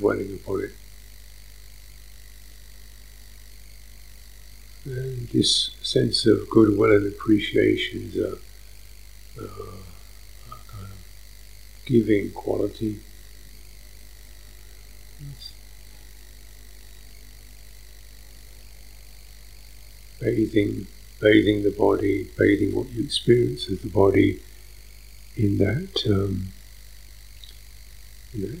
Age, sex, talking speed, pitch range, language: 50-69, male, 70 wpm, 100-105 Hz, English